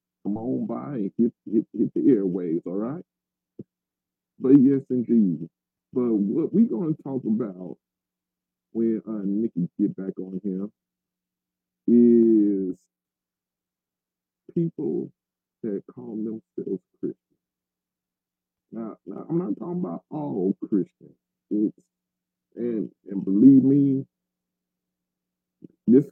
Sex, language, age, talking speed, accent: male, English, 40-59, 110 wpm, American